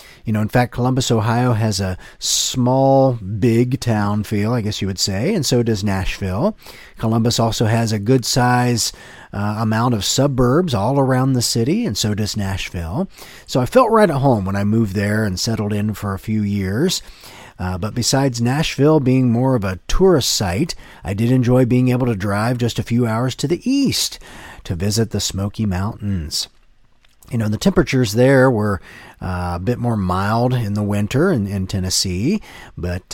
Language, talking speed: English, 185 wpm